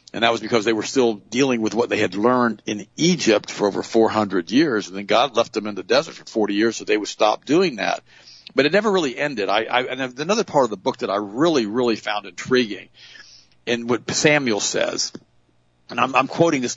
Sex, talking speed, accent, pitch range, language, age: male, 230 wpm, American, 105-130 Hz, English, 50-69